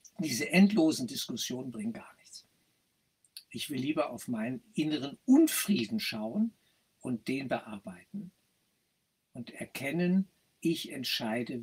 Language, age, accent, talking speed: German, 60-79, German, 110 wpm